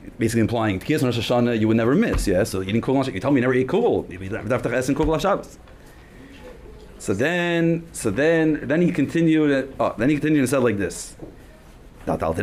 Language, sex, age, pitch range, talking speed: Hebrew, male, 30-49, 110-150 Hz, 225 wpm